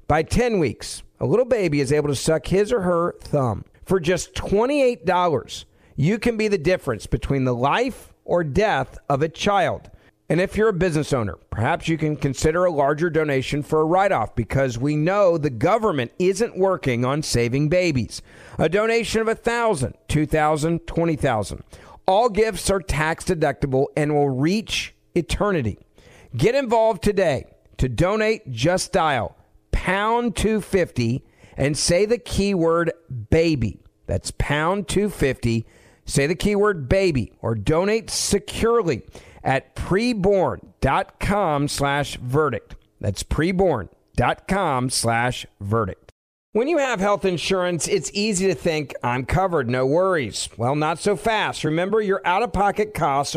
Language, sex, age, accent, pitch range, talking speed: English, male, 50-69, American, 135-200 Hz, 145 wpm